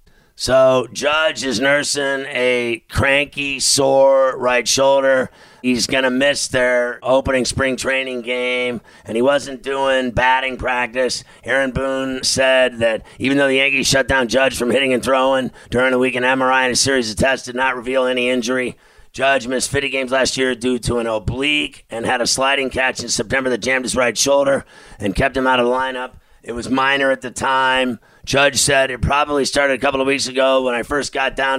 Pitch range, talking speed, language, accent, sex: 125-135 Hz, 195 wpm, English, American, male